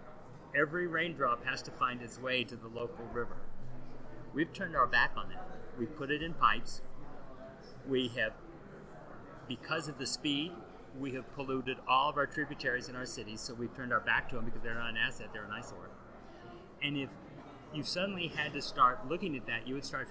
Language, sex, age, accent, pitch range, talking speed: English, male, 40-59, American, 120-145 Hz, 195 wpm